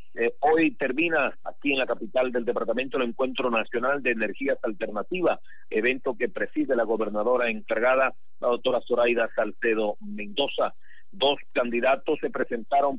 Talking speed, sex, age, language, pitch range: 140 wpm, male, 50-69, Spanish, 120-160 Hz